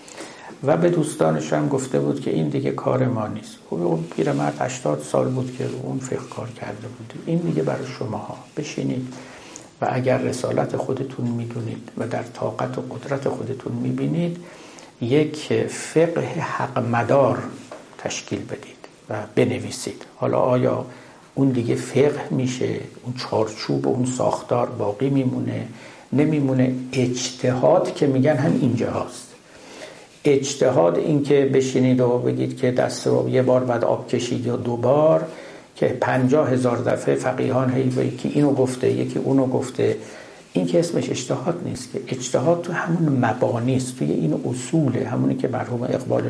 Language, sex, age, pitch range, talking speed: Persian, male, 60-79, 120-140 Hz, 155 wpm